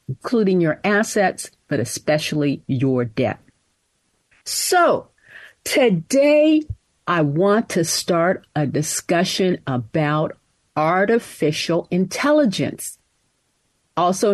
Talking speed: 80 wpm